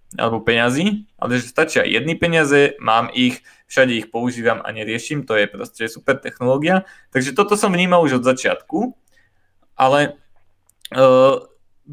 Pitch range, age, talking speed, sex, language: 125-155 Hz, 20-39, 145 wpm, male, Czech